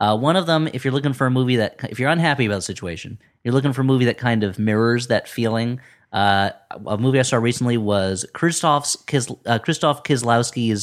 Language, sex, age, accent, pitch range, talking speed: English, male, 30-49, American, 95-120 Hz, 210 wpm